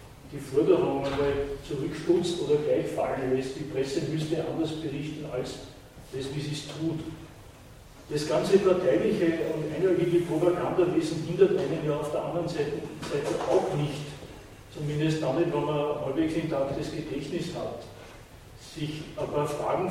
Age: 40-59